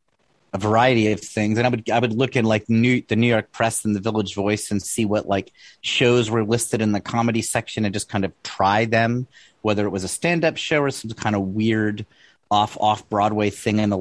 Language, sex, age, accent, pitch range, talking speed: English, male, 30-49, American, 100-120 Hz, 235 wpm